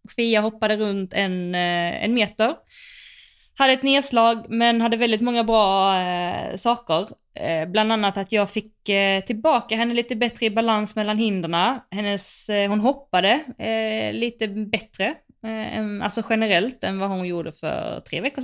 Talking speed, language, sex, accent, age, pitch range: 155 wpm, Swedish, female, native, 20-39, 175-225 Hz